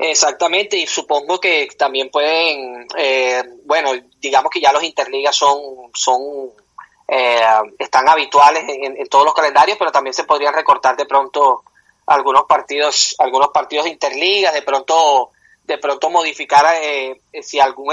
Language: Spanish